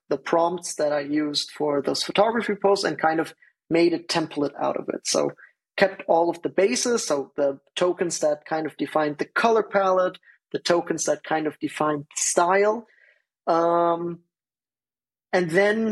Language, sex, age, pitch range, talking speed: English, male, 20-39, 150-195 Hz, 165 wpm